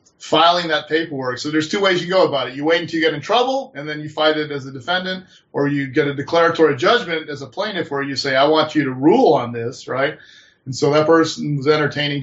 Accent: American